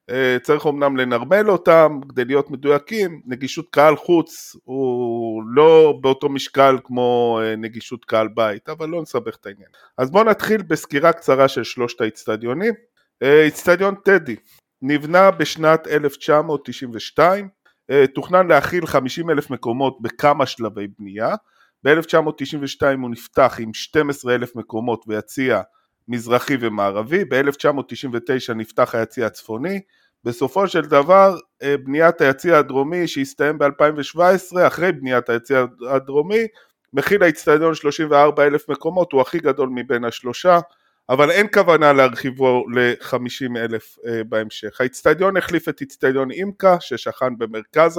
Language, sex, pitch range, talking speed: Hebrew, male, 125-165 Hz, 115 wpm